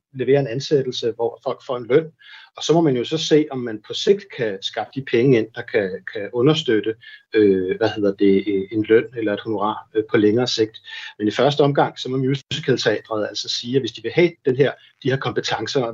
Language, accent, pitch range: Danish, native, 110-150 Hz